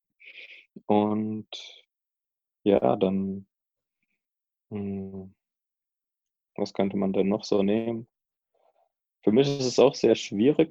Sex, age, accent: male, 20-39, German